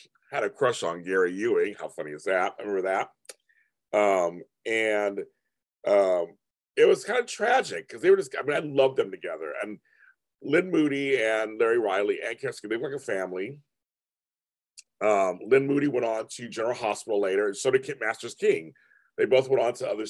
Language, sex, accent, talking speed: English, male, American, 195 wpm